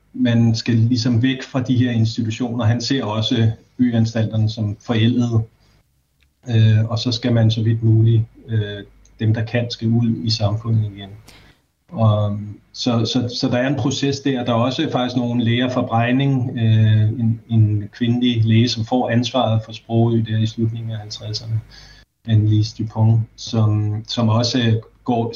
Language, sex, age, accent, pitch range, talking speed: Danish, male, 30-49, native, 110-120 Hz, 160 wpm